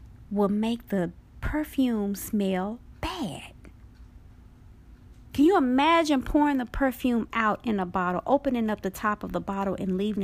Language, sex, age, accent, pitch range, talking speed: English, female, 40-59, American, 160-245 Hz, 145 wpm